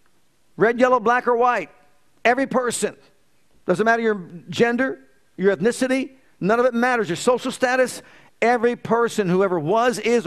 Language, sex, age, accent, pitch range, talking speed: English, male, 50-69, American, 190-215 Hz, 145 wpm